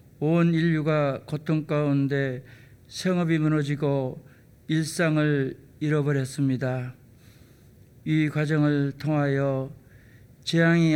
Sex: male